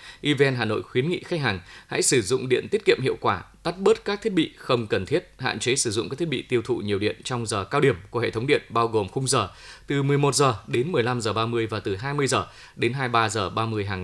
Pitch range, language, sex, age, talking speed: 115-150 Hz, Vietnamese, male, 20-39, 265 wpm